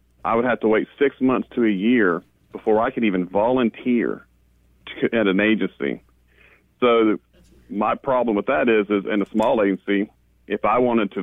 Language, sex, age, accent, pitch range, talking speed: English, male, 40-59, American, 95-110 Hz, 185 wpm